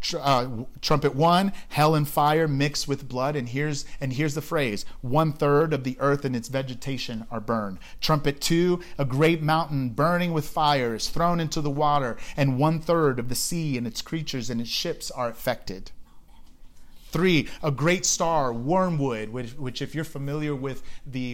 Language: English